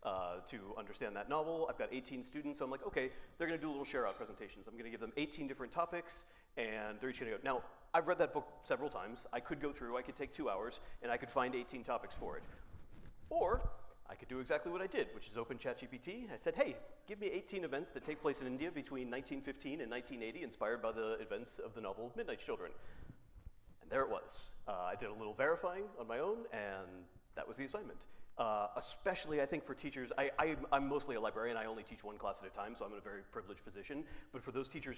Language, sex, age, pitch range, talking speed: English, male, 40-59, 115-170 Hz, 240 wpm